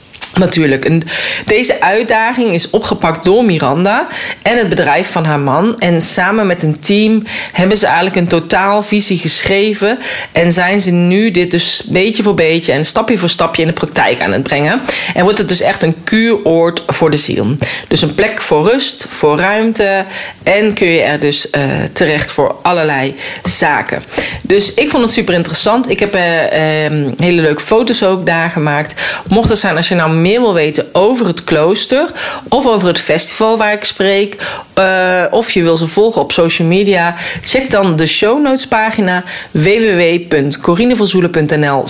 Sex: female